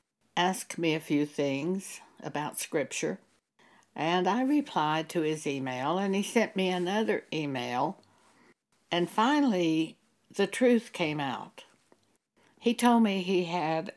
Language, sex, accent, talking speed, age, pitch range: English, female, American, 130 wpm, 60-79, 155-200 Hz